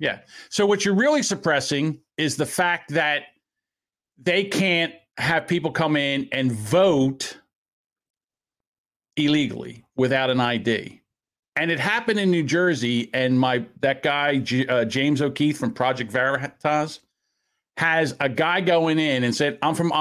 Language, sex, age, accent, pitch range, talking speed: English, male, 50-69, American, 135-185 Hz, 145 wpm